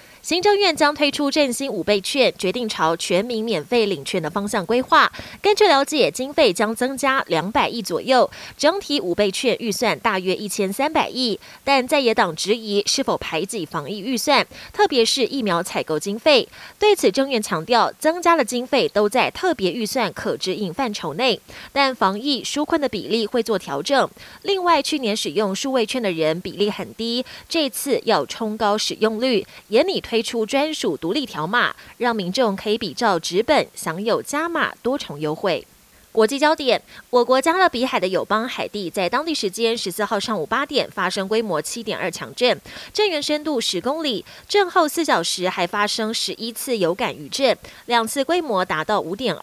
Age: 20-39